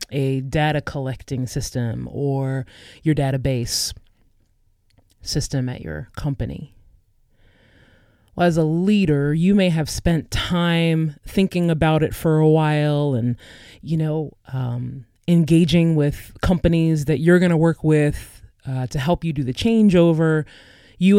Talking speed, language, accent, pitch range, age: 135 wpm, English, American, 110-165 Hz, 20-39